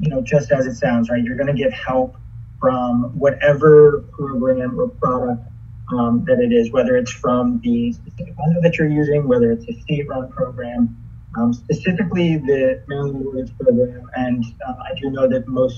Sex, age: male, 20-39